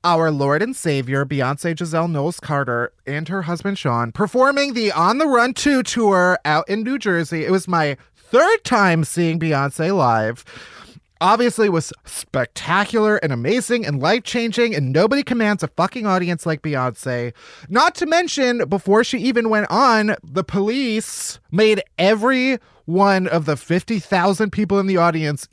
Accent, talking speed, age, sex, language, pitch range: American, 155 wpm, 30-49, male, English, 155-220 Hz